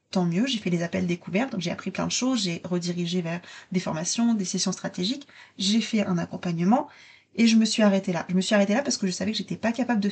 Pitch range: 180-220 Hz